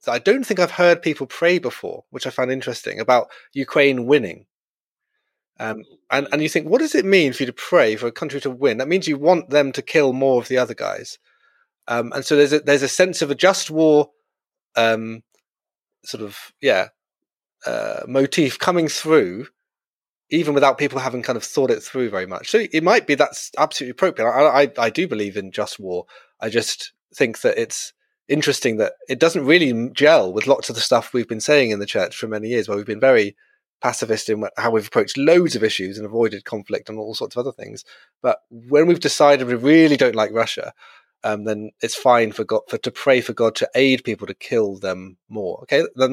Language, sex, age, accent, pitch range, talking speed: English, male, 30-49, British, 115-155 Hz, 215 wpm